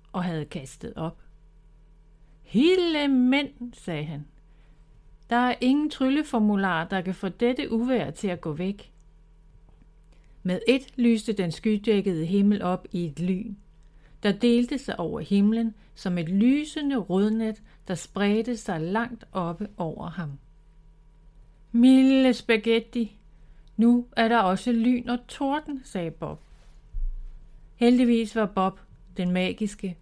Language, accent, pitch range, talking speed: Danish, native, 160-230 Hz, 125 wpm